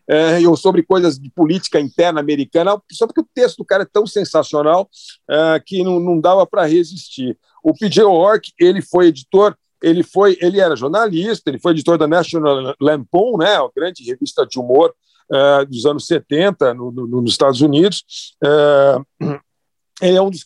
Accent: Brazilian